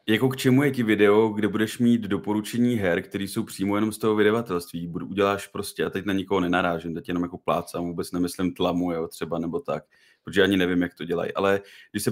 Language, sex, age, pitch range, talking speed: Czech, male, 30-49, 90-105 Hz, 230 wpm